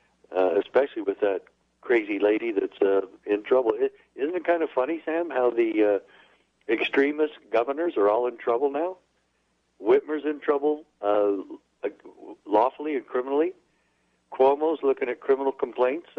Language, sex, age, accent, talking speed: English, male, 60-79, American, 140 wpm